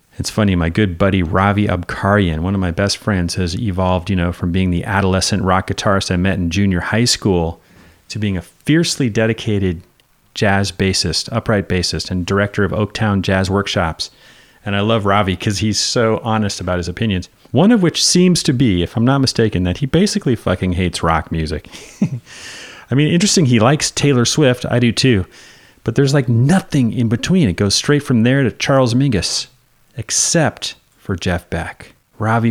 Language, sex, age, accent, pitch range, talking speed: English, male, 30-49, American, 90-130 Hz, 185 wpm